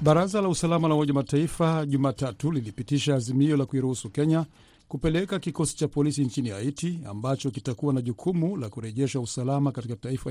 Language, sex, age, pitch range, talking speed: Swahili, male, 50-69, 125-150 Hz, 150 wpm